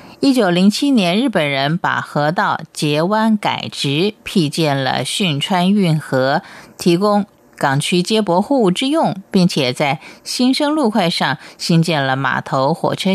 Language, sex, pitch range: Japanese, female, 150-200 Hz